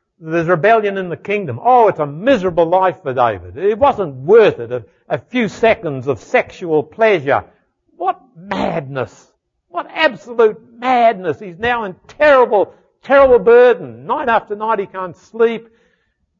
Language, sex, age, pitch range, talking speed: English, male, 60-79, 135-220 Hz, 145 wpm